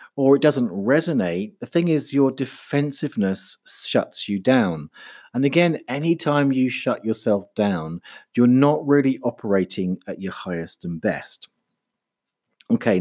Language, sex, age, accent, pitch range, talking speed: English, male, 40-59, British, 105-145 Hz, 135 wpm